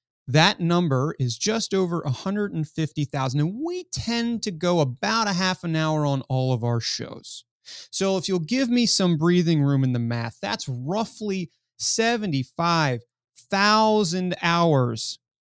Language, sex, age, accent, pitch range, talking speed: English, male, 30-49, American, 135-180 Hz, 140 wpm